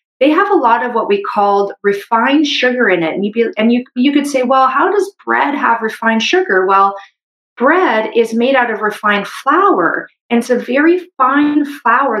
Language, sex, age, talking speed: English, female, 40-59, 200 wpm